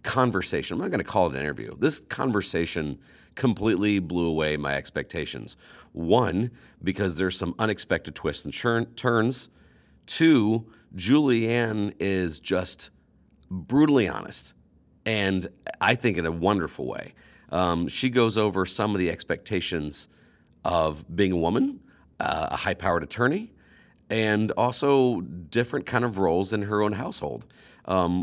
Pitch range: 85-110 Hz